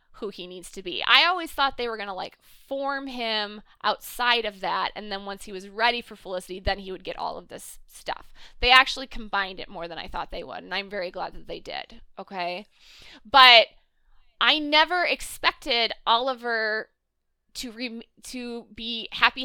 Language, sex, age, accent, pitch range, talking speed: English, female, 20-39, American, 200-260 Hz, 190 wpm